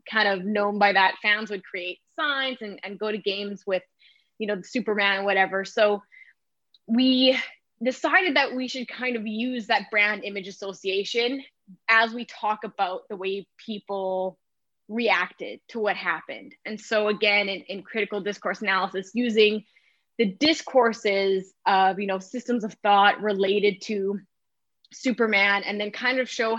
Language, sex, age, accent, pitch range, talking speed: English, female, 10-29, American, 195-235 Hz, 155 wpm